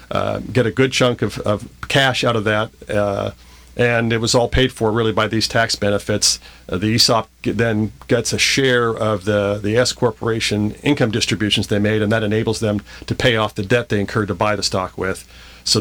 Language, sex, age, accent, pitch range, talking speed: English, male, 40-59, American, 100-120 Hz, 215 wpm